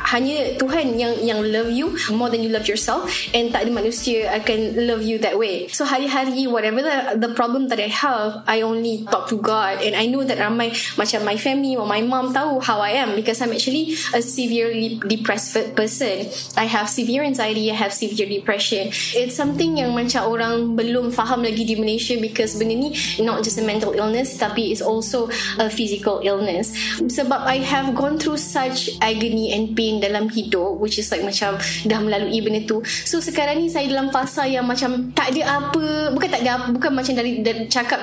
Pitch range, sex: 220-265 Hz, female